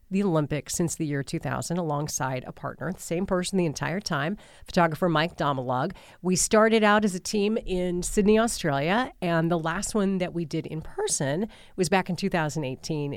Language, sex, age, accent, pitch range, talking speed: English, female, 40-59, American, 150-210 Hz, 180 wpm